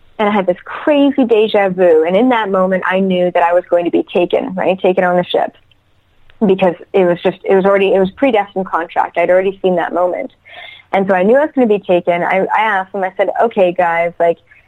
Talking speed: 245 wpm